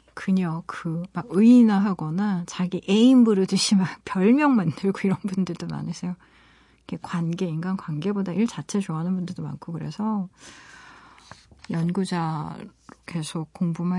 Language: Korean